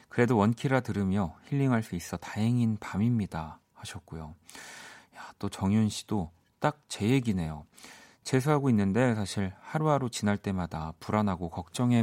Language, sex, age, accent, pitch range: Korean, male, 40-59, native, 90-130 Hz